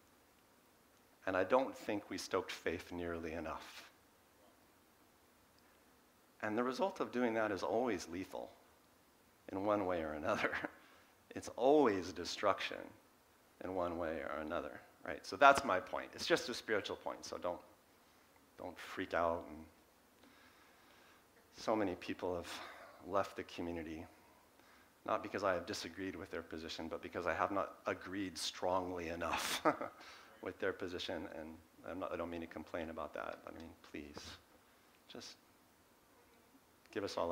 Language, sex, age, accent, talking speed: English, male, 50-69, American, 140 wpm